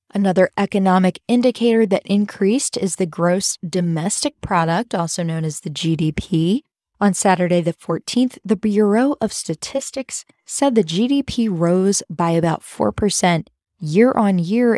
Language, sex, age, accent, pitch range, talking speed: English, female, 10-29, American, 170-215 Hz, 125 wpm